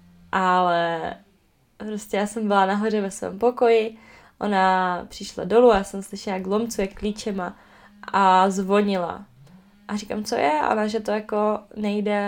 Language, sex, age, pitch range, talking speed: Czech, female, 20-39, 195-225 Hz, 150 wpm